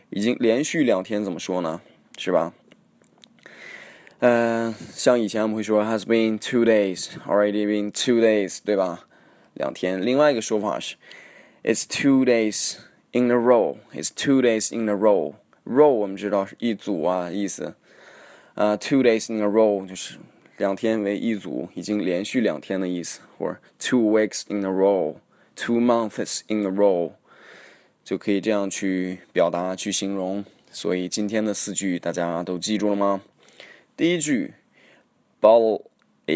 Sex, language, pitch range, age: male, Chinese, 100-115 Hz, 20-39